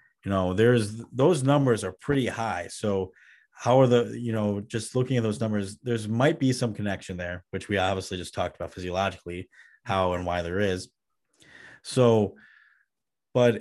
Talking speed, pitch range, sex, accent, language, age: 170 wpm, 95-120 Hz, male, American, English, 30-49